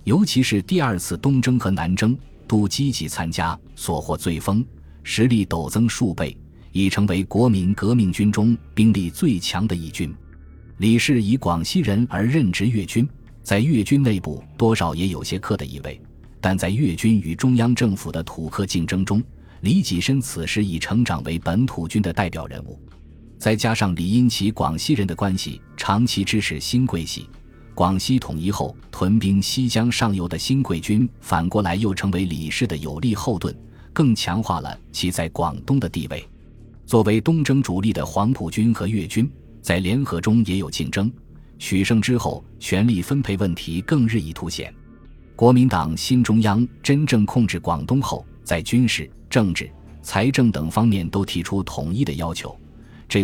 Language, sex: Chinese, male